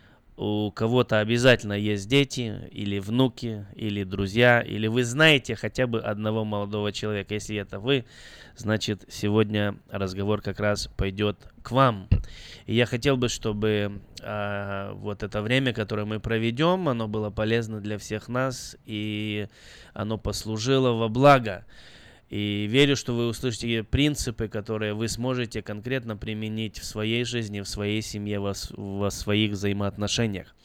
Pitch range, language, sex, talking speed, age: 105-120 Hz, Russian, male, 135 wpm, 20-39